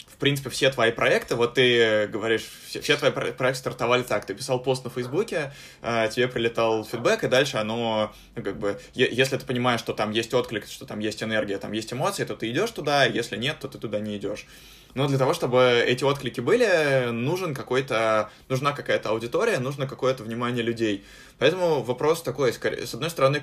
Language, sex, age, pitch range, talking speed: Russian, male, 20-39, 110-130 Hz, 195 wpm